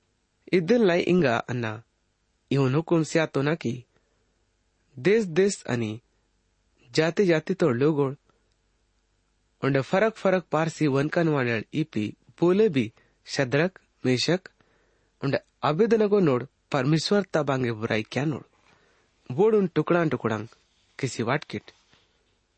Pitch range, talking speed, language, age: 110-165 Hz, 55 wpm, English, 30-49